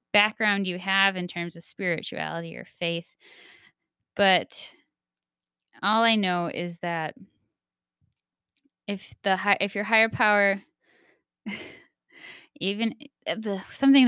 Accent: American